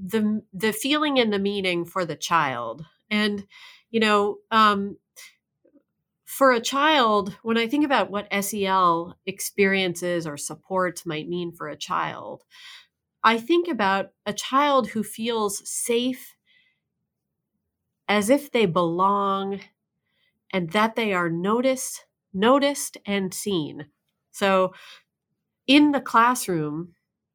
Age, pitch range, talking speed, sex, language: 30-49, 185-265 Hz, 120 wpm, female, English